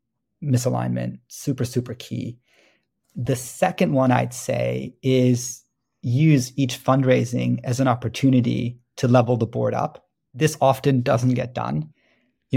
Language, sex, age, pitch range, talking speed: English, male, 30-49, 120-130 Hz, 130 wpm